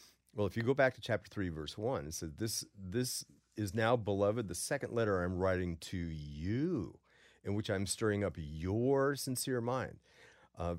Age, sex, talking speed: 40-59, male, 195 wpm